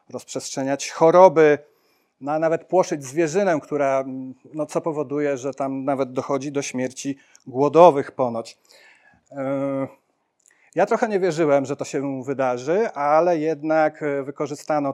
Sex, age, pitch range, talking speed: male, 40-59, 130-150 Hz, 120 wpm